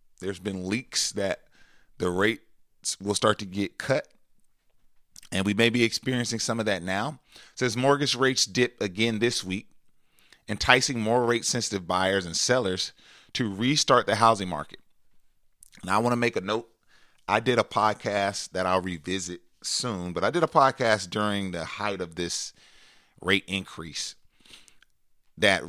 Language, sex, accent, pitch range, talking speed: English, male, American, 95-115 Hz, 160 wpm